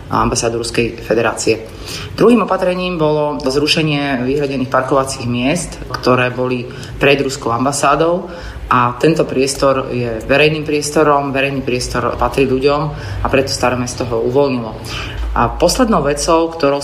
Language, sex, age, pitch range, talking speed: Slovak, female, 30-49, 125-145 Hz, 125 wpm